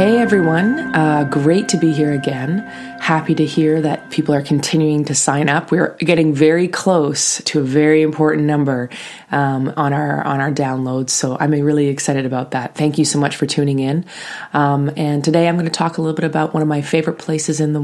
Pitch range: 145-165 Hz